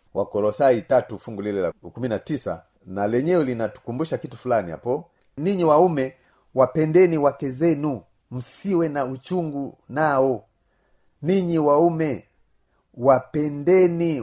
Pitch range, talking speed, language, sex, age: 115-155 Hz, 100 wpm, Swahili, male, 40-59